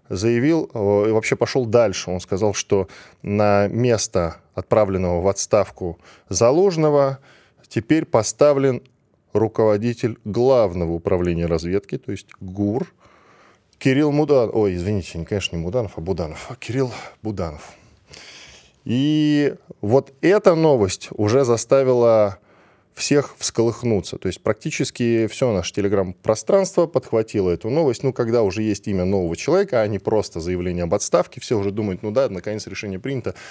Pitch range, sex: 95-125 Hz, male